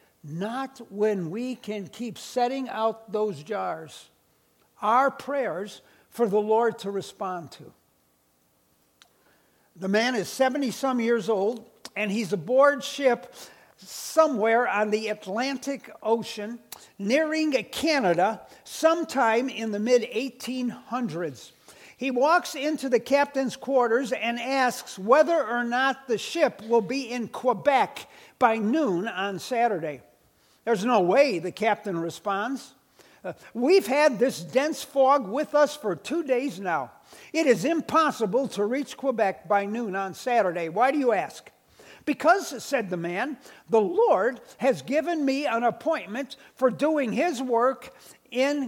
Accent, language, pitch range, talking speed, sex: American, English, 200-270 Hz, 130 wpm, male